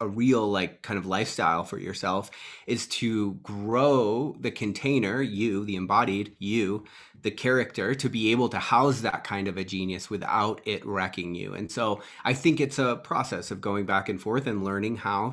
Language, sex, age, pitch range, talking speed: English, male, 30-49, 95-120 Hz, 190 wpm